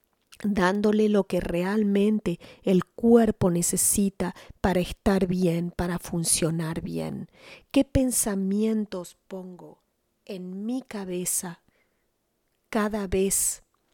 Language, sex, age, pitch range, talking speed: English, female, 40-59, 180-215 Hz, 90 wpm